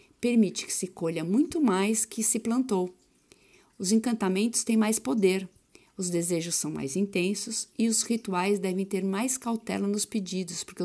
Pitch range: 180-220 Hz